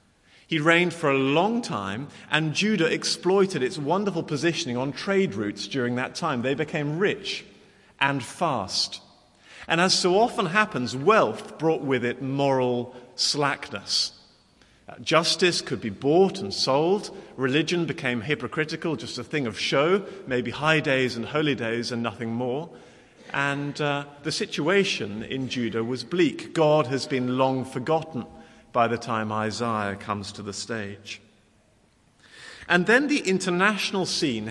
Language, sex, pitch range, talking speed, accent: English, male, 120-175 Hz, 145 wpm, British